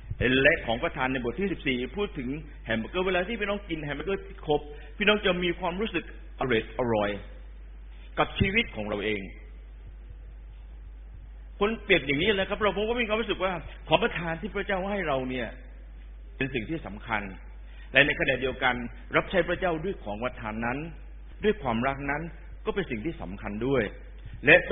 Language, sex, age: Thai, male, 60-79